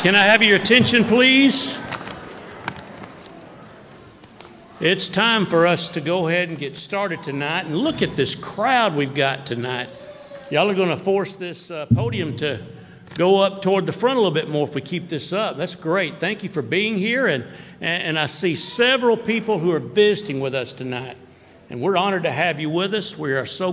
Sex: male